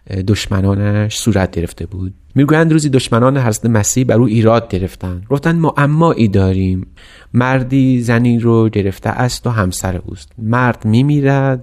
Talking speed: 145 wpm